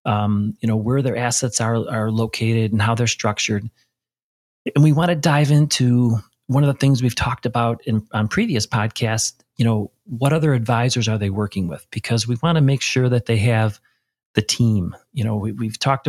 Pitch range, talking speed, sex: 110-130 Hz, 205 wpm, male